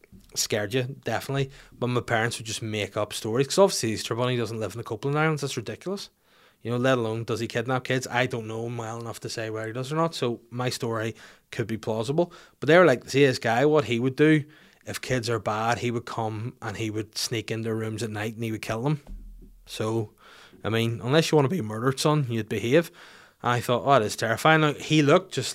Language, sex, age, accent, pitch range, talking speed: English, male, 20-39, Irish, 110-140 Hz, 250 wpm